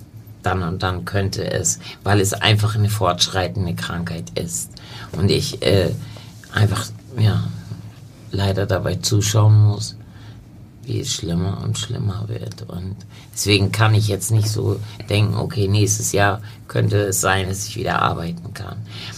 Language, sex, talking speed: German, male, 145 wpm